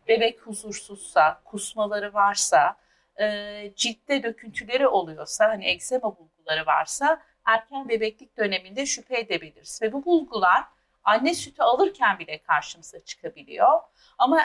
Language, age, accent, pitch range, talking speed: Turkish, 50-69, native, 200-260 Hz, 110 wpm